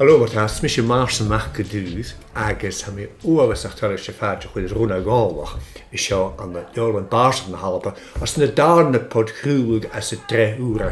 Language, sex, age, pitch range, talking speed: English, male, 60-79, 90-120 Hz, 145 wpm